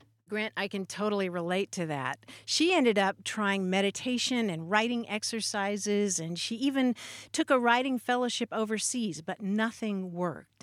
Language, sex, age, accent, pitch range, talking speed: English, female, 50-69, American, 190-255 Hz, 145 wpm